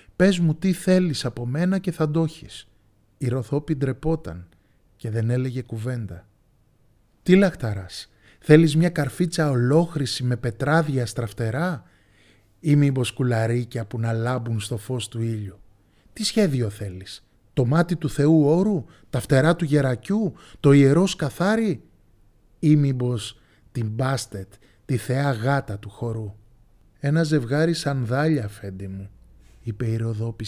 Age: 30-49